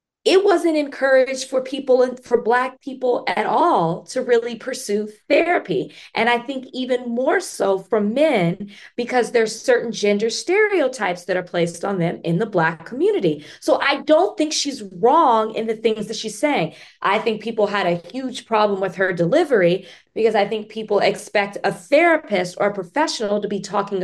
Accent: American